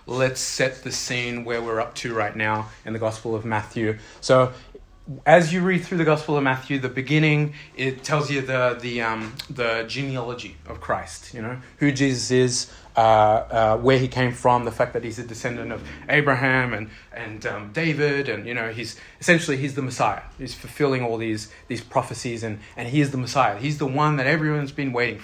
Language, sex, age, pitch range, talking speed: English, male, 30-49, 115-145 Hz, 205 wpm